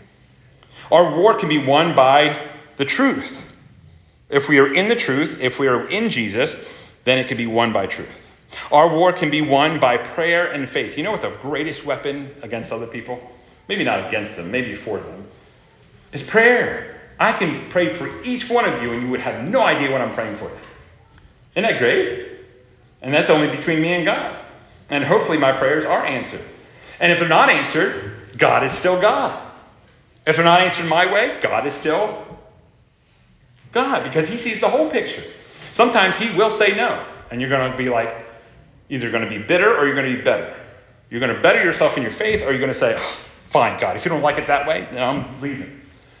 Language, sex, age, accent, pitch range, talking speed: English, male, 40-59, American, 125-180 Hz, 205 wpm